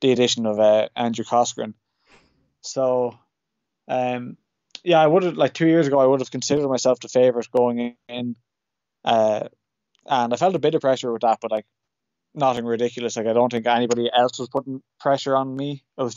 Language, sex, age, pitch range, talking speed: English, male, 20-39, 115-130 Hz, 195 wpm